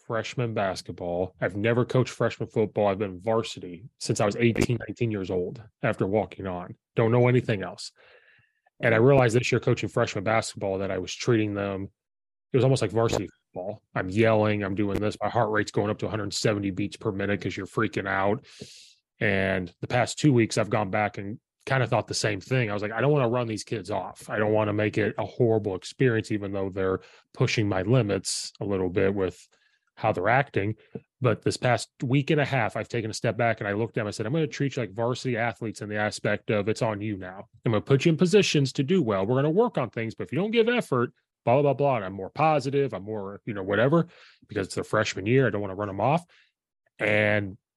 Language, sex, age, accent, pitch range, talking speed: English, male, 20-39, American, 105-130 Hz, 240 wpm